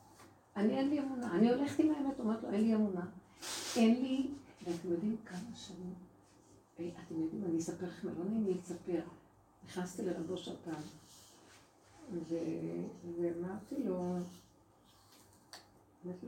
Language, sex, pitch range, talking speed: Hebrew, female, 175-225 Hz, 125 wpm